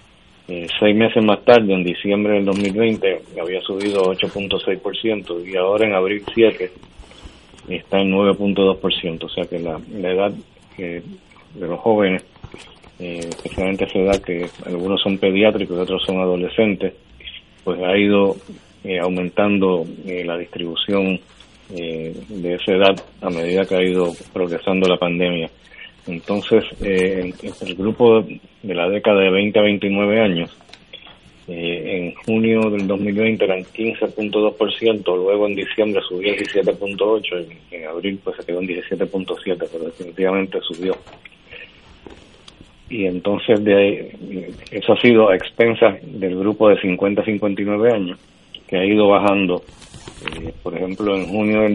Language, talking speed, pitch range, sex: Spanish, 145 wpm, 90-105 Hz, male